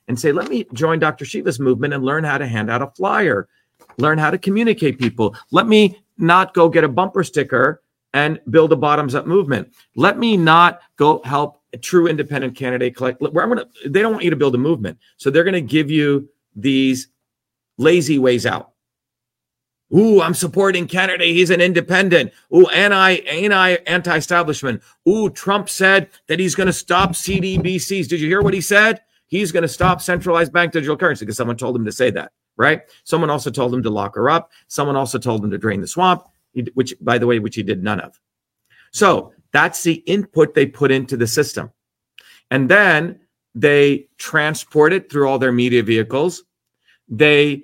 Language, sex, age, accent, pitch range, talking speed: English, male, 40-59, American, 125-175 Hz, 195 wpm